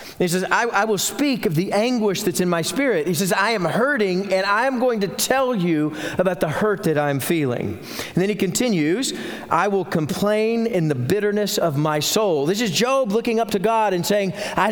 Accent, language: American, English